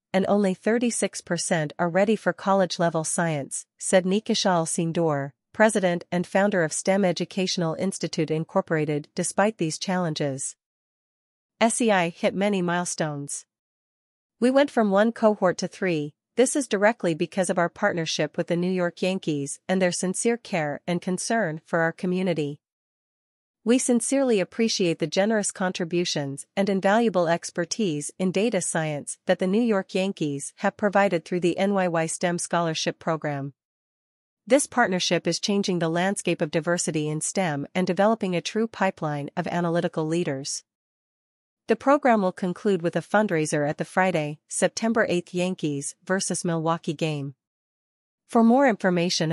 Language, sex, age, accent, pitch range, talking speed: English, female, 40-59, American, 165-200 Hz, 140 wpm